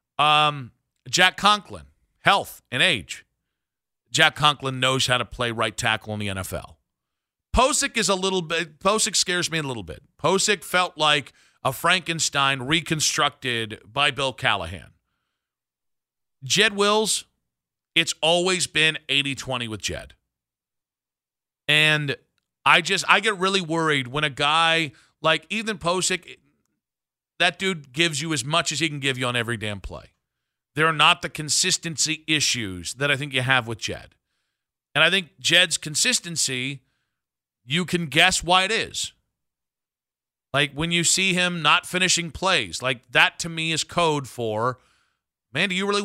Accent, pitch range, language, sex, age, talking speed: American, 125-180 Hz, English, male, 40-59, 150 wpm